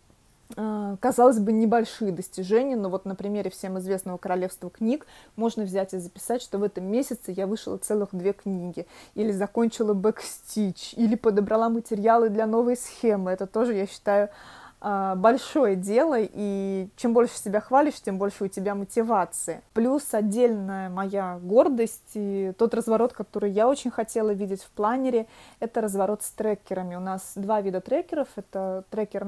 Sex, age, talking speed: female, 20-39, 155 wpm